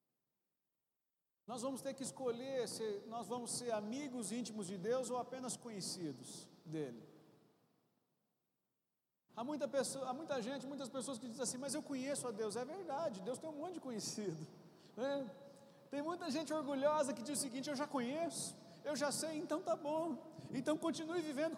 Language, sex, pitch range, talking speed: Portuguese, male, 210-285 Hz, 165 wpm